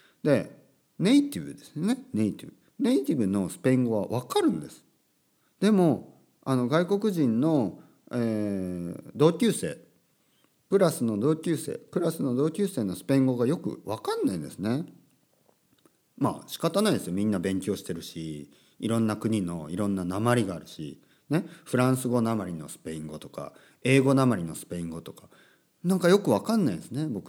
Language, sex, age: Japanese, male, 40-59